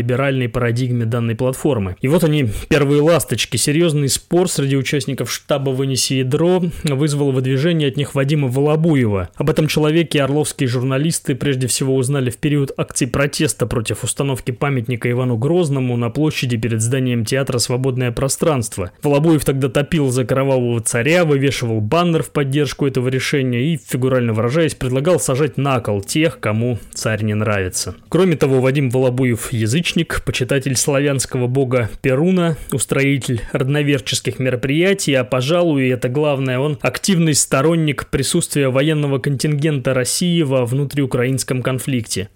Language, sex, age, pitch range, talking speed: Russian, male, 20-39, 125-150 Hz, 135 wpm